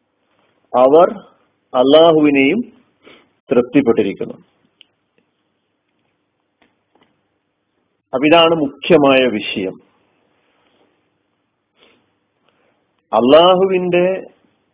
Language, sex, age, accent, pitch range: Malayalam, male, 40-59, native, 130-180 Hz